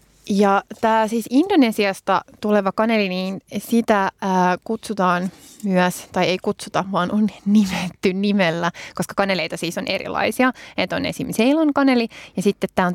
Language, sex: Finnish, female